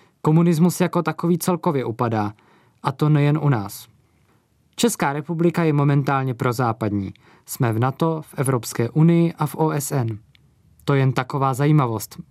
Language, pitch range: Czech, 130-160 Hz